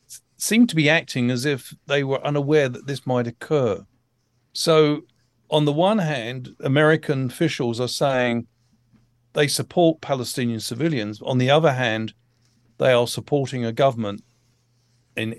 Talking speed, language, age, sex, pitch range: 140 wpm, English, 50-69, male, 120-145 Hz